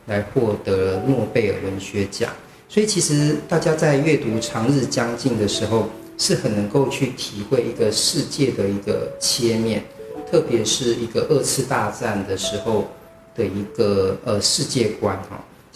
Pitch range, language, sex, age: 110-140 Hz, Chinese, male, 40-59